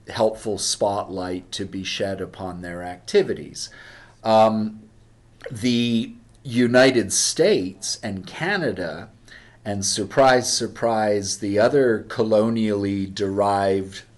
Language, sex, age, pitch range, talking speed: English, male, 40-59, 100-120 Hz, 85 wpm